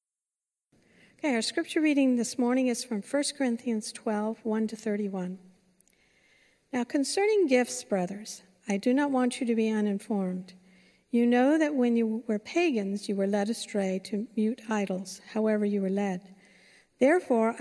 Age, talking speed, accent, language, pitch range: 60-79, 155 wpm, American, English, 205-250 Hz